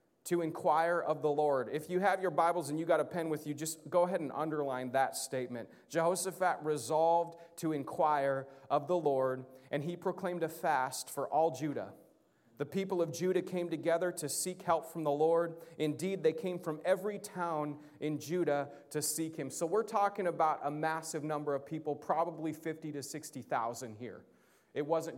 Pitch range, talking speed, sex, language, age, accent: 155-185 Hz, 185 wpm, male, English, 30-49, American